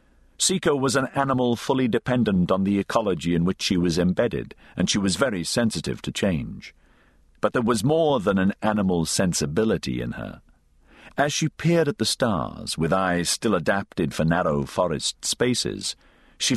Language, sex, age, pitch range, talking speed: English, male, 50-69, 80-130 Hz, 165 wpm